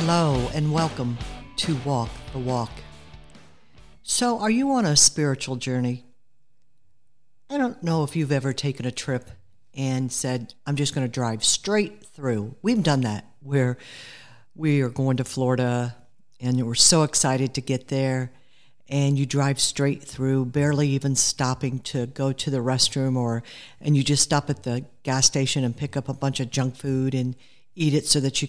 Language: English